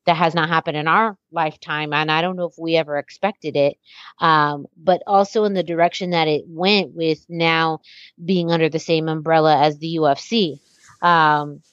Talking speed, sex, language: 185 wpm, female, English